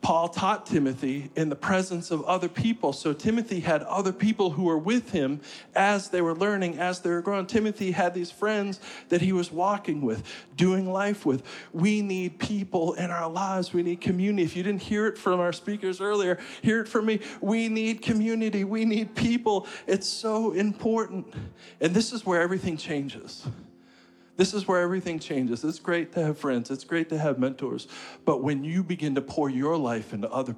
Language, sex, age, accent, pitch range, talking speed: English, male, 40-59, American, 150-205 Hz, 195 wpm